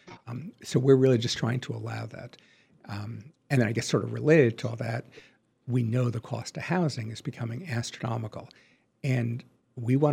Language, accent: English, American